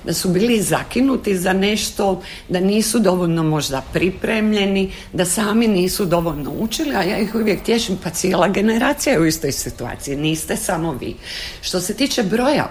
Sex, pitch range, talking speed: female, 155-215 Hz, 160 wpm